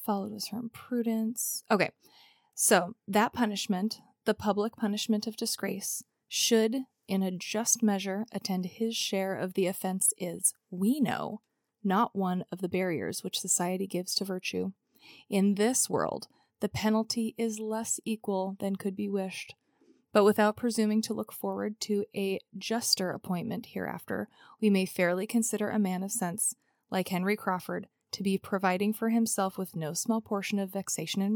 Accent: American